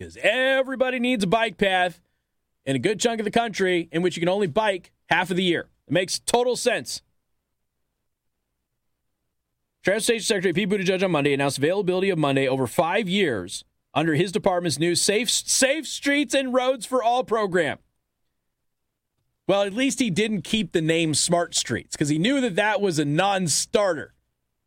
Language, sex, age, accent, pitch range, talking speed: English, male, 40-59, American, 165-235 Hz, 170 wpm